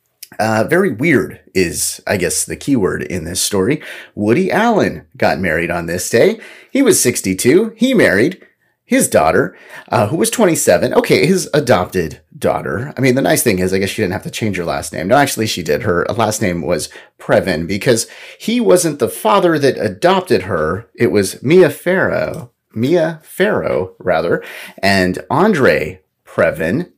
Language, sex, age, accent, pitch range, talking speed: English, male, 30-49, American, 95-150 Hz, 170 wpm